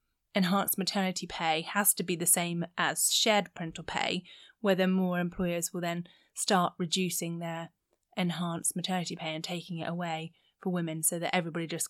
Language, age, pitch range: English, 20-39, 175-205 Hz